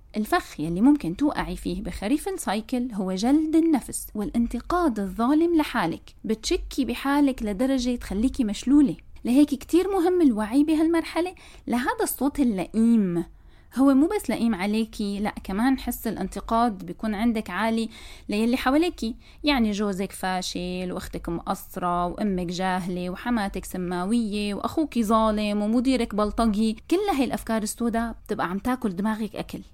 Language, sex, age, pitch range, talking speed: Arabic, female, 20-39, 205-285 Hz, 125 wpm